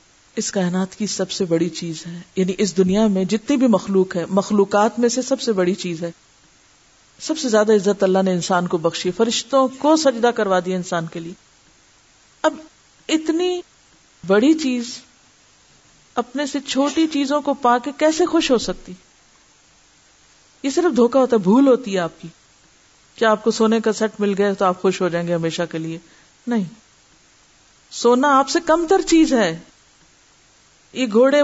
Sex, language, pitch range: female, Urdu, 190-275 Hz